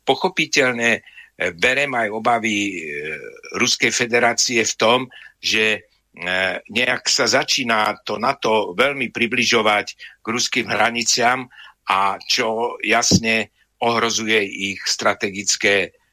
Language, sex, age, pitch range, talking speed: Slovak, male, 60-79, 105-125 Hz, 95 wpm